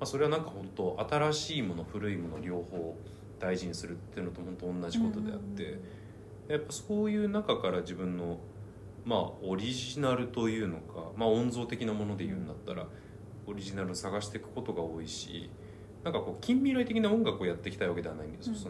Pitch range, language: 95-130 Hz, Japanese